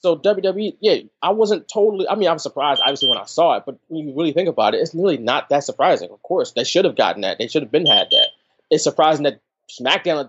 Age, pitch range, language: 20-39, 140-230 Hz, English